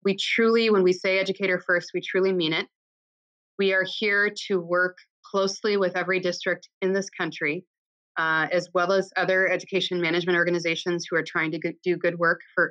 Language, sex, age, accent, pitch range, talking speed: English, female, 30-49, American, 165-195 Hz, 185 wpm